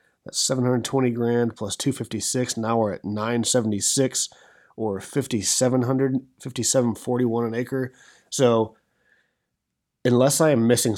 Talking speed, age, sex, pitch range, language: 105 wpm, 30-49, male, 105-130 Hz, English